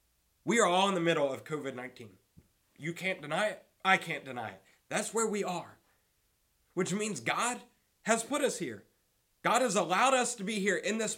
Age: 30-49